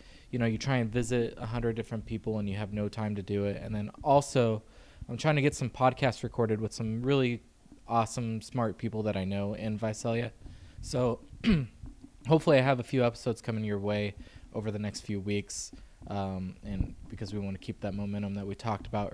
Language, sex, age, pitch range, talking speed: English, male, 20-39, 100-120 Hz, 210 wpm